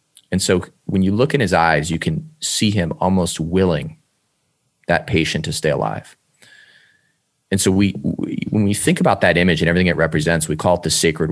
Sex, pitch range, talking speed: male, 85-100 Hz, 200 wpm